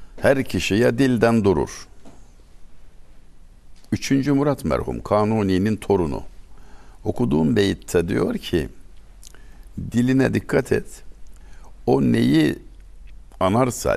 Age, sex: 60-79, male